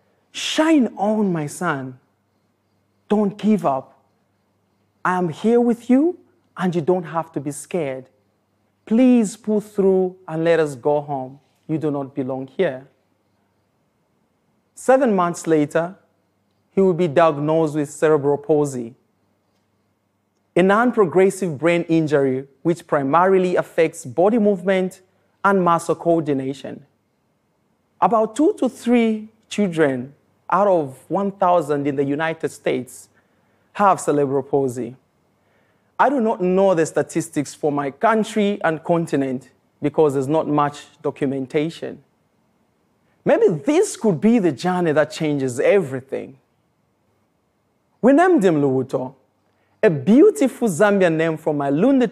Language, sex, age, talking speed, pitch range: English, male, 40-59, 120 wpm, 135-195 Hz